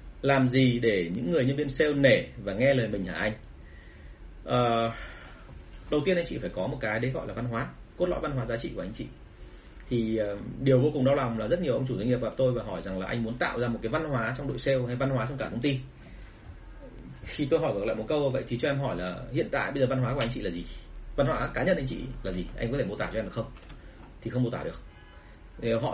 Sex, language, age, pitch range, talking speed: male, Vietnamese, 30-49, 115-145 Hz, 280 wpm